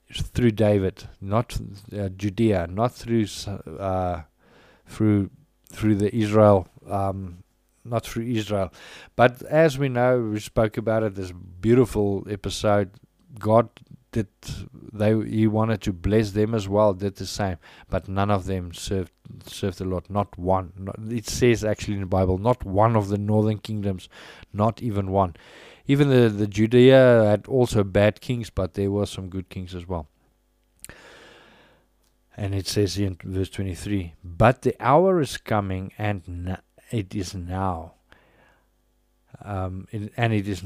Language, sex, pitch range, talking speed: English, male, 95-115 Hz, 150 wpm